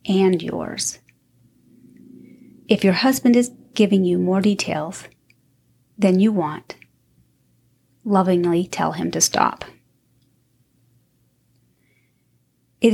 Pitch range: 130-205 Hz